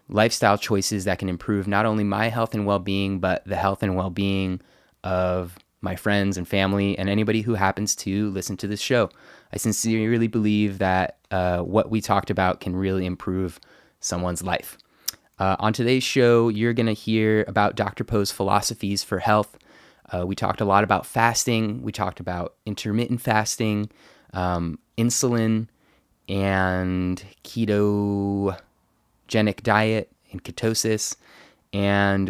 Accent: American